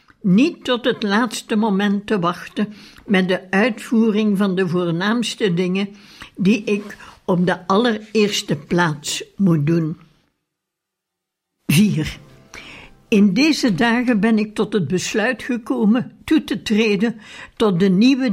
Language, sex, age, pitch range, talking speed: Dutch, female, 60-79, 195-245 Hz, 125 wpm